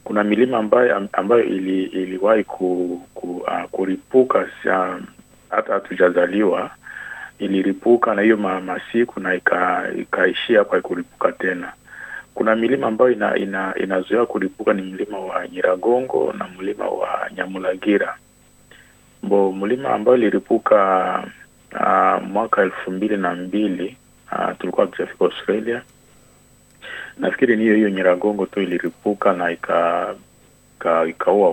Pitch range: 95-105 Hz